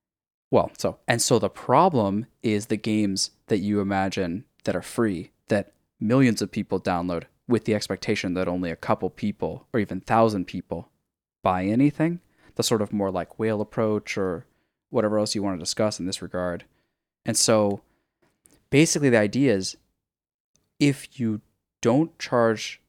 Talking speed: 160 wpm